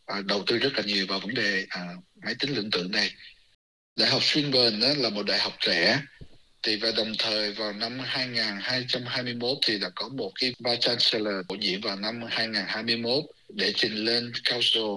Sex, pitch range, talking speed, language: male, 100-125 Hz, 175 wpm, Vietnamese